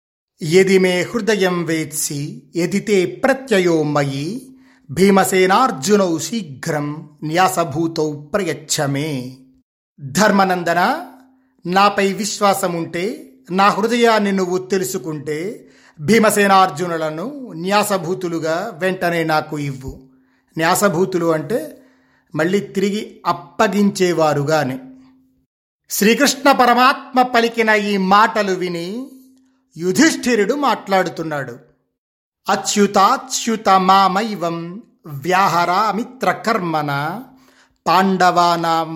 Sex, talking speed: male, 60 wpm